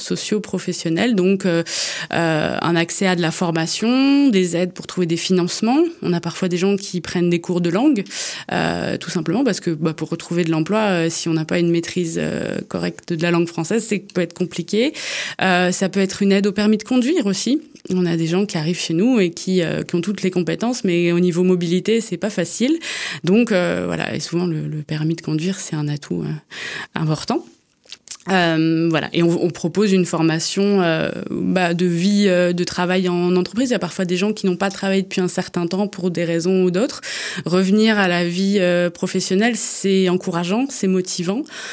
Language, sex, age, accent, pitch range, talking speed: French, female, 20-39, French, 170-200 Hz, 215 wpm